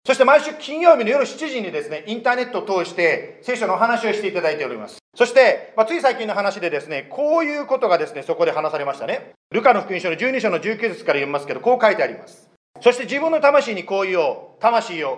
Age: 40-59